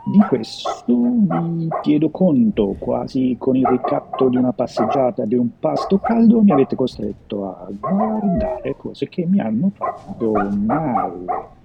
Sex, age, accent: male, 40-59, native